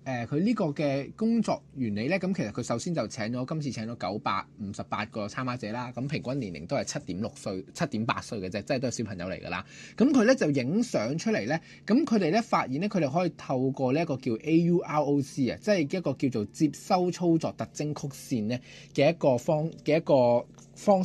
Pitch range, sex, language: 120-175 Hz, male, Chinese